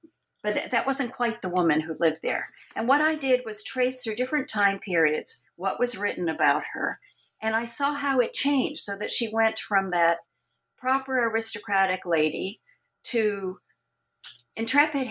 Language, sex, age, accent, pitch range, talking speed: English, female, 50-69, American, 175-250 Hz, 165 wpm